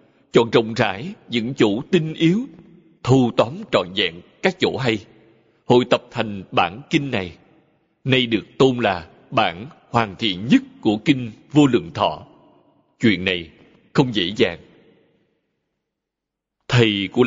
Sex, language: male, Vietnamese